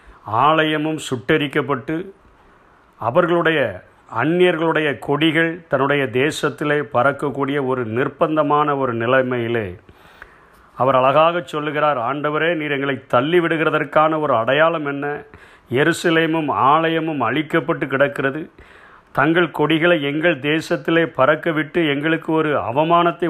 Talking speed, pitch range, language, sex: 90 wpm, 145-170 Hz, Tamil, male